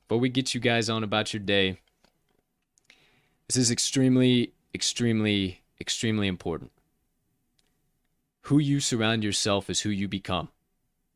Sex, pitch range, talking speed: male, 95-120 Hz, 125 wpm